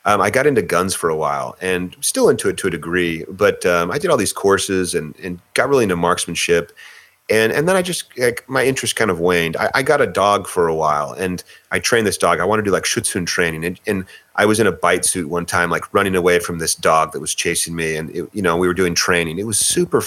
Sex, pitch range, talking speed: male, 85-125 Hz, 270 wpm